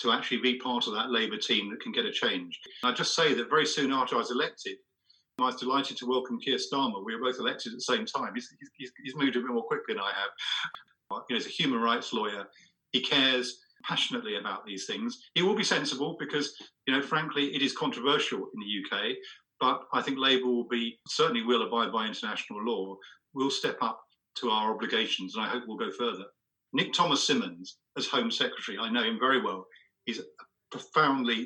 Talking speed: 220 wpm